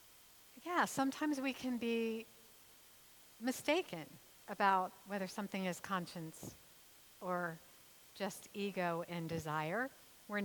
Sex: female